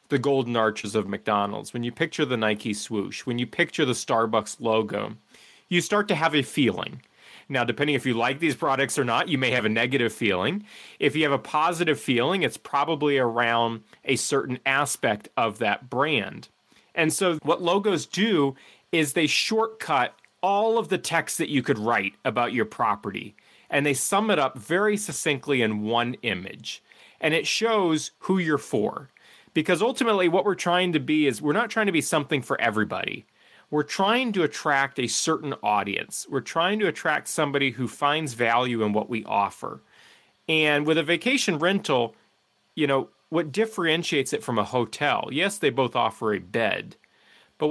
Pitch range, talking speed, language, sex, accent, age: 120-170 Hz, 180 wpm, English, male, American, 30-49